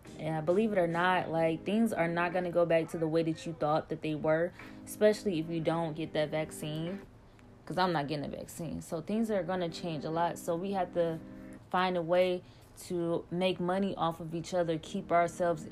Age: 20-39